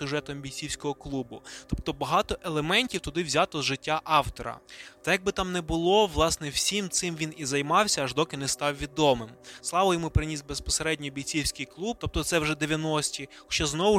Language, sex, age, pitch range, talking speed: Ukrainian, male, 20-39, 140-170 Hz, 170 wpm